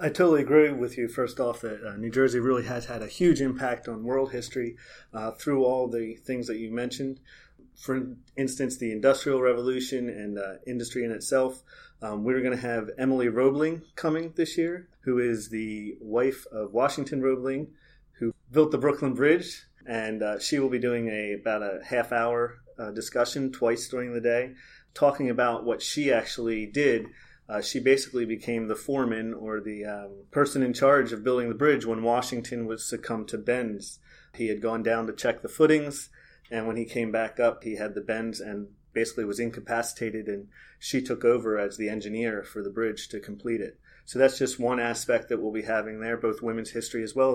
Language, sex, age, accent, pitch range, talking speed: English, male, 30-49, American, 110-135 Hz, 195 wpm